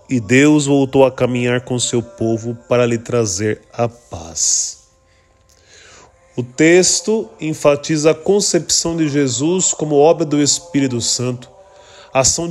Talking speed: 125 wpm